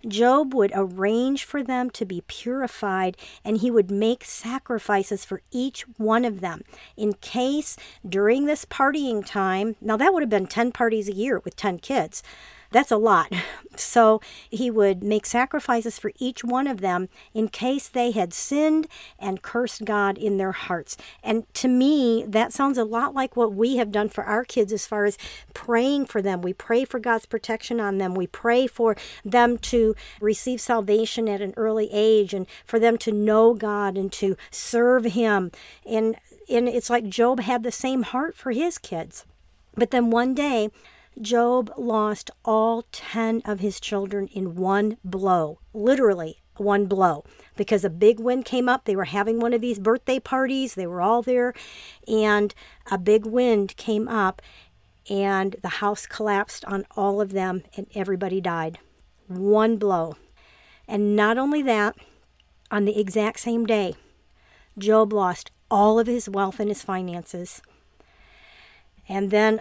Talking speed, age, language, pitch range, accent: 170 wpm, 50-69, English, 200-240 Hz, American